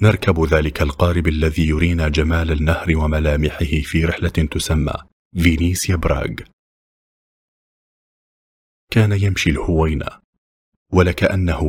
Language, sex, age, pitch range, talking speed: English, male, 40-59, 75-90 Hz, 85 wpm